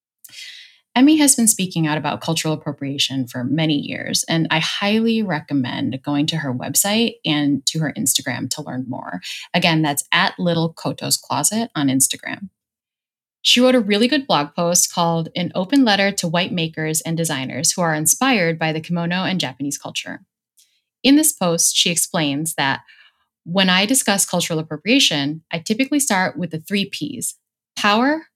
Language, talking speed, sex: English, 160 wpm, female